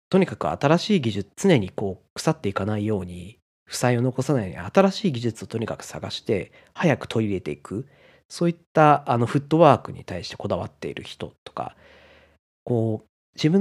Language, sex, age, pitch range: Japanese, male, 40-59, 100-170 Hz